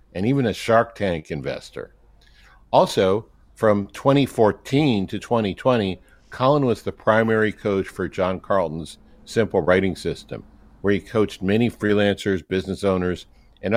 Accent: American